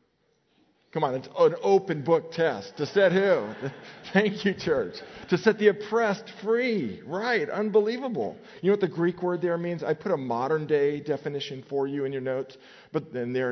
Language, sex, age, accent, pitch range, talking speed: English, male, 50-69, American, 125-170 Hz, 185 wpm